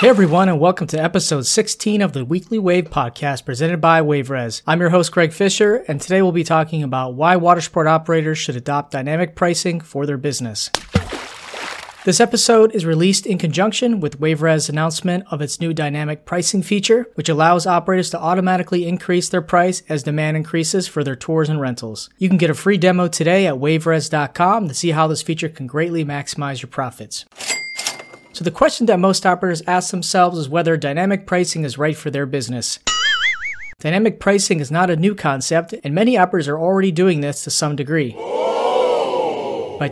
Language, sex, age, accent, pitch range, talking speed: English, male, 30-49, American, 150-185 Hz, 185 wpm